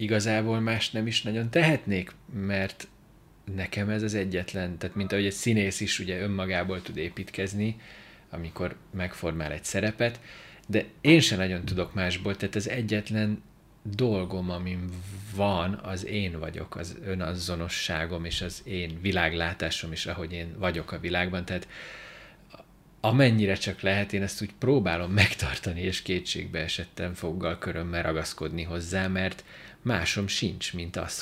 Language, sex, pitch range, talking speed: Hungarian, male, 85-105 Hz, 140 wpm